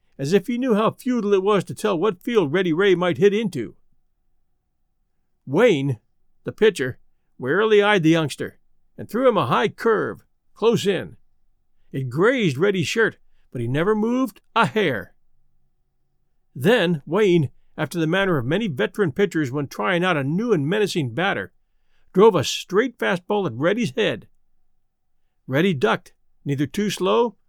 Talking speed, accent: 155 wpm, American